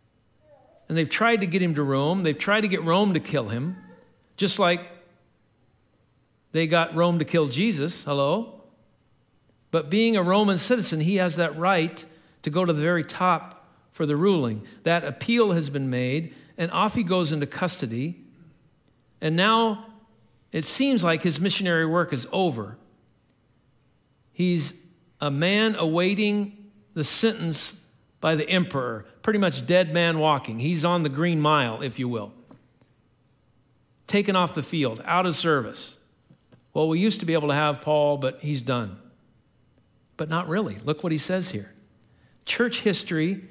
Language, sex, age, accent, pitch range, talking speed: English, male, 50-69, American, 135-185 Hz, 160 wpm